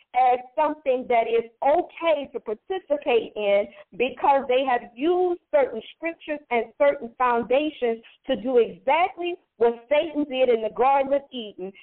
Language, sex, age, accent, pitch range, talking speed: English, female, 40-59, American, 225-290 Hz, 140 wpm